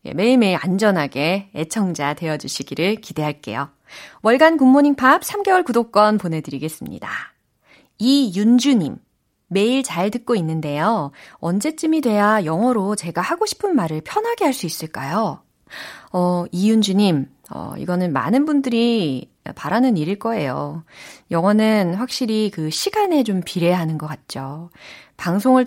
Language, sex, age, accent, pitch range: Korean, female, 30-49, native, 160-240 Hz